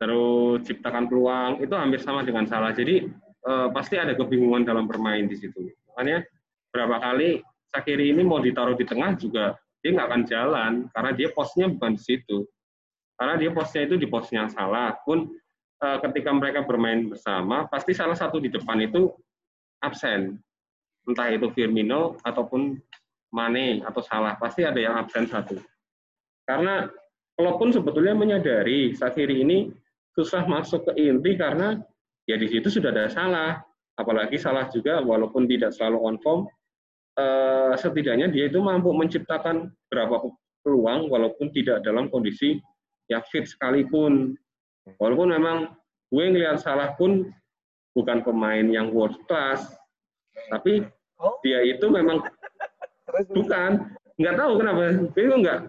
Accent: native